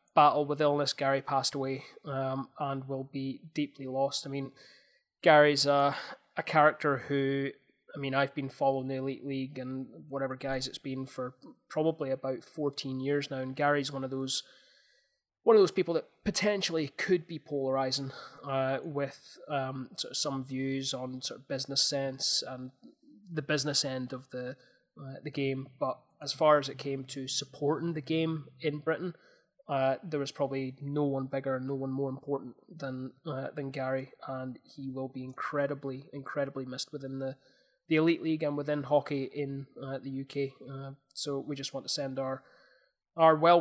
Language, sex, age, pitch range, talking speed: English, male, 20-39, 135-150 Hz, 175 wpm